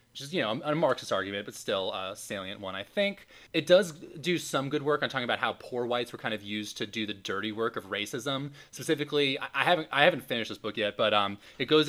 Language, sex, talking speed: English, male, 245 wpm